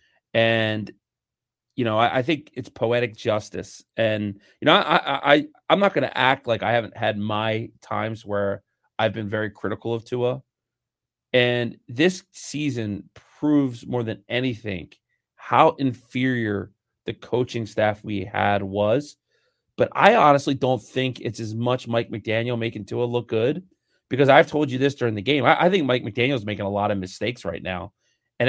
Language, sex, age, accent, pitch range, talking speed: English, male, 30-49, American, 110-130 Hz, 175 wpm